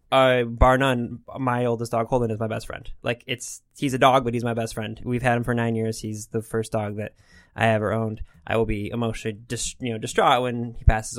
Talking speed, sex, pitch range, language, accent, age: 245 wpm, male, 110-125 Hz, English, American, 20-39